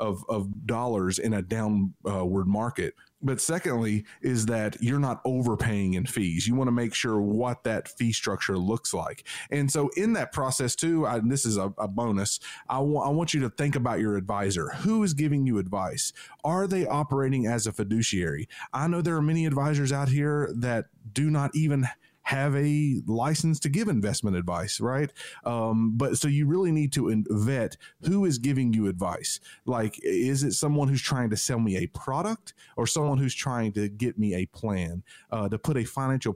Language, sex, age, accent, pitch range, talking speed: English, male, 30-49, American, 105-135 Hz, 200 wpm